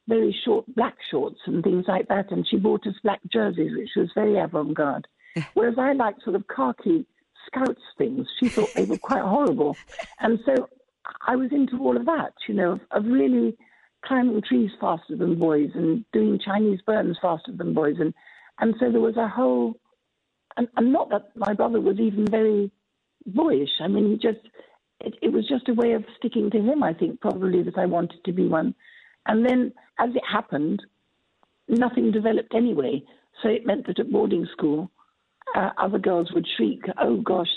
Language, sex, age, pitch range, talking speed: English, female, 60-79, 195-250 Hz, 190 wpm